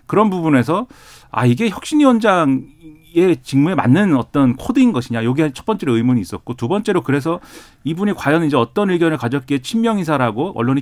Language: Korean